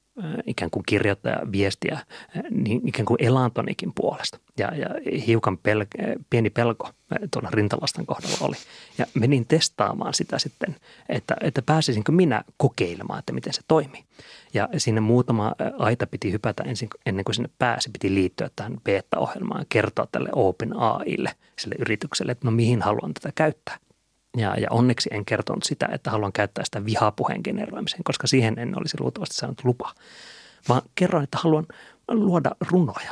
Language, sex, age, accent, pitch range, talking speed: Finnish, male, 30-49, native, 110-155 Hz, 150 wpm